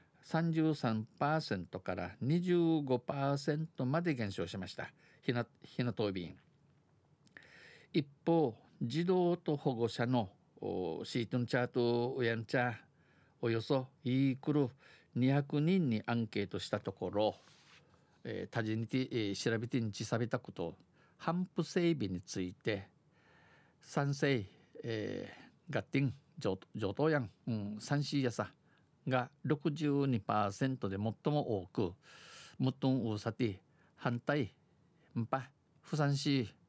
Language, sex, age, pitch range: Japanese, male, 50-69, 115-150 Hz